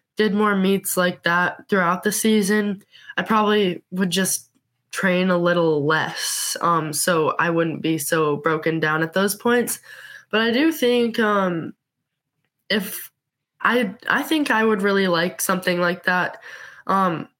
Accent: American